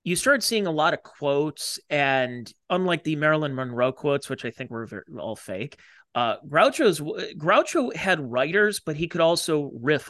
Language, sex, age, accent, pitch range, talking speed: English, male, 30-49, American, 125-160 Hz, 170 wpm